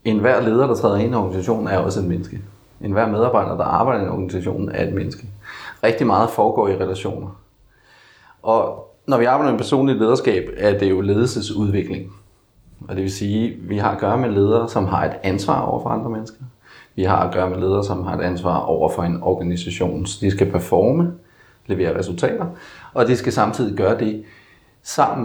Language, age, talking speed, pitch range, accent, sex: Danish, 30-49, 200 wpm, 95-115 Hz, native, male